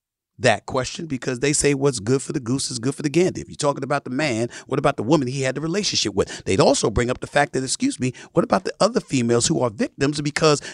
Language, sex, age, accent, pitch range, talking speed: English, male, 40-59, American, 120-170 Hz, 270 wpm